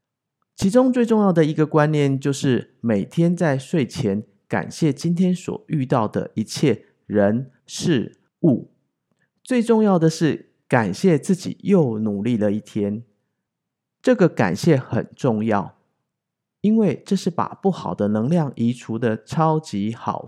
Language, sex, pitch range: Chinese, male, 115-170 Hz